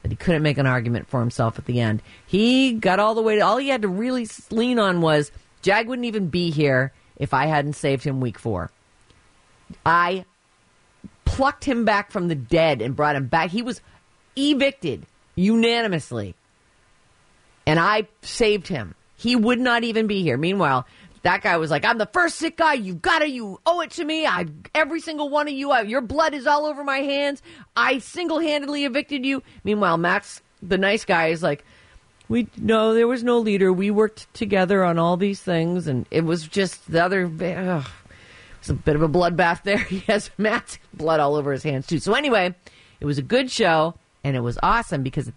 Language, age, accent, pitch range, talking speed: English, 40-59, American, 150-235 Hz, 205 wpm